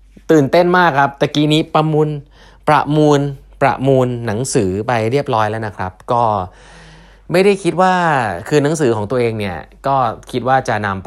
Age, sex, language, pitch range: 20-39, male, Thai, 90-130 Hz